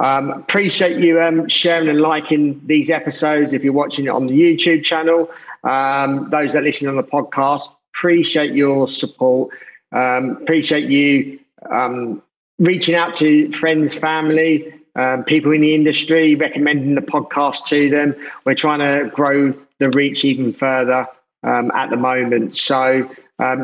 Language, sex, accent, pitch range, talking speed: English, male, British, 130-150 Hz, 150 wpm